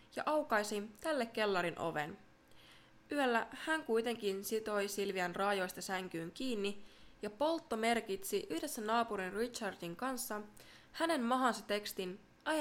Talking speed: 115 wpm